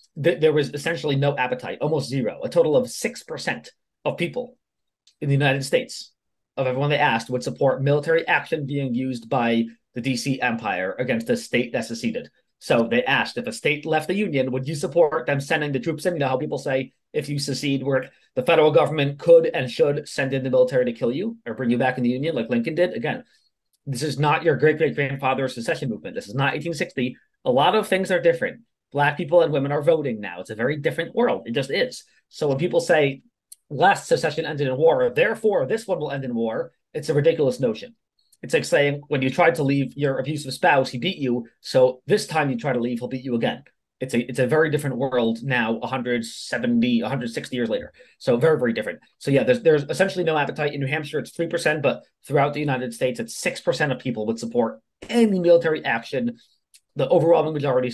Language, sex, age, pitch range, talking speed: English, male, 30-49, 130-175 Hz, 220 wpm